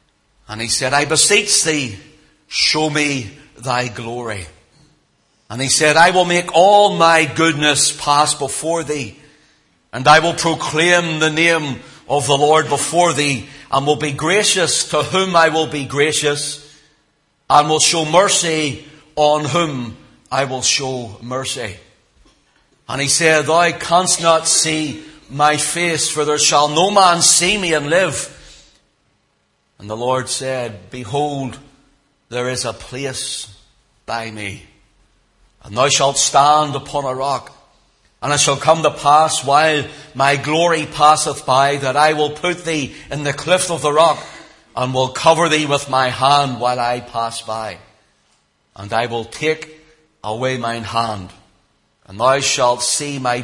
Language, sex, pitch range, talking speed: English, male, 125-155 Hz, 150 wpm